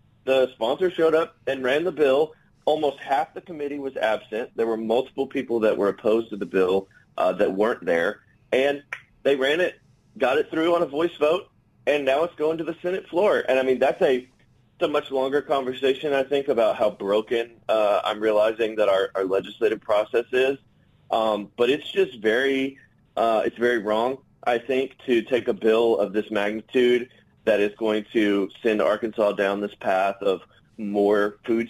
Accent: American